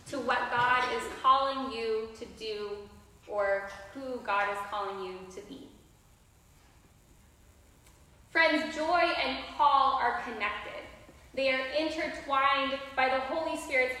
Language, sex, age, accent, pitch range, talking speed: English, female, 10-29, American, 230-295 Hz, 125 wpm